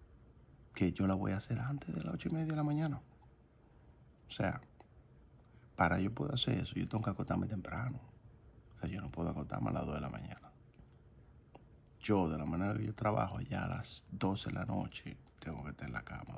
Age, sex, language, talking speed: 60-79, male, Spanish, 215 wpm